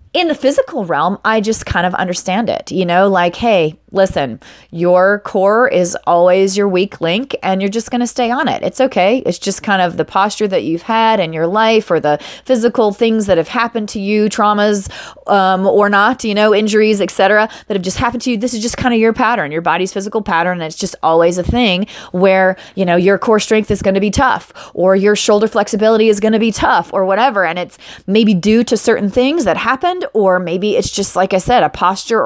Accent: American